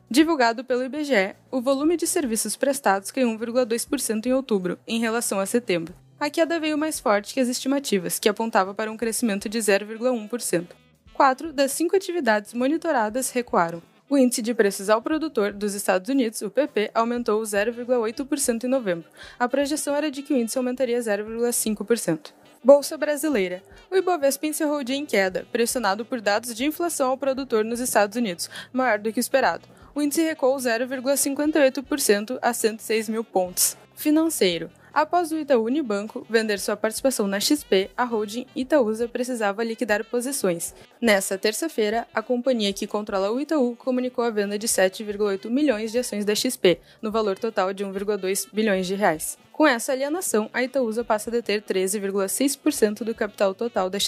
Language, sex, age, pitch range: Portuguese, female, 20-39, 210-265 Hz